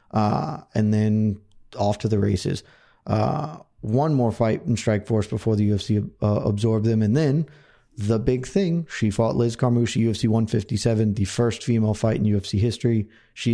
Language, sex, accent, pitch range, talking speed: English, male, American, 110-125 Hz, 175 wpm